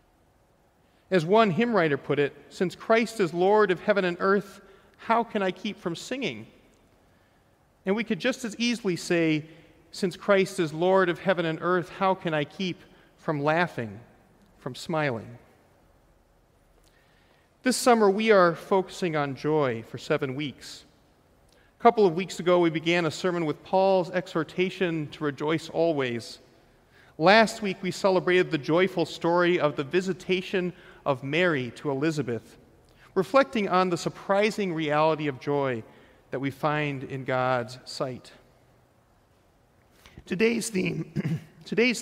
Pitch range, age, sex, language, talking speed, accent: 140-190 Hz, 40-59, male, English, 140 wpm, American